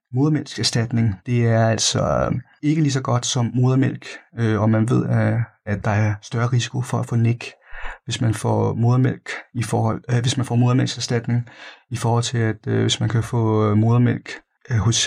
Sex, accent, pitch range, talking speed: male, native, 110-125 Hz, 170 wpm